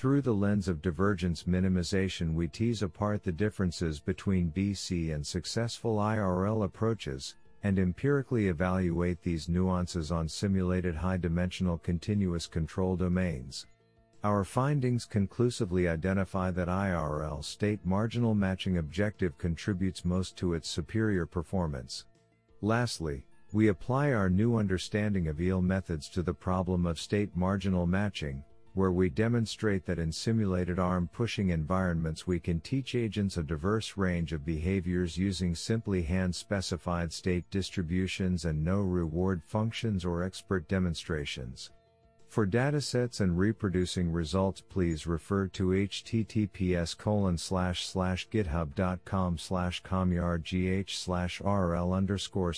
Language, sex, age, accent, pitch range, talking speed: English, male, 50-69, American, 85-105 Hz, 125 wpm